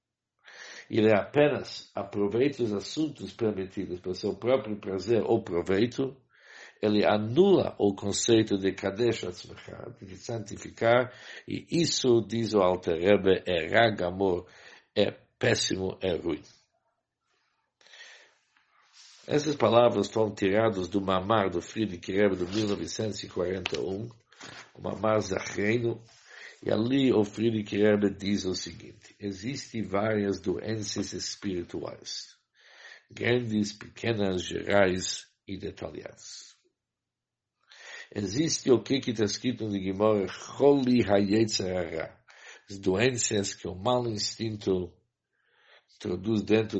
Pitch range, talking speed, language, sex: 100-120 Hz, 105 wpm, French, male